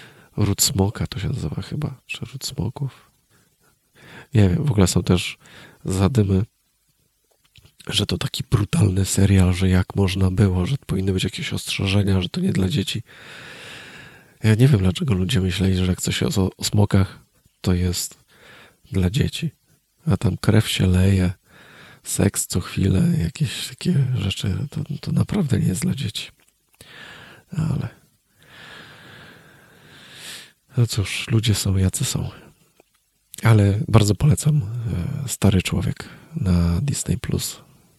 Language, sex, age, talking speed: Polish, male, 40-59, 135 wpm